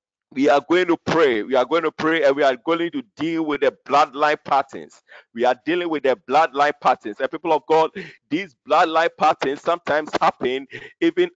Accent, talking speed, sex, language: Nigerian, 195 wpm, male, English